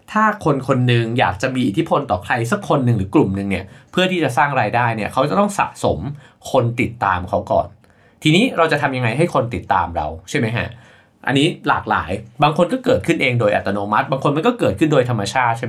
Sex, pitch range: male, 115-160 Hz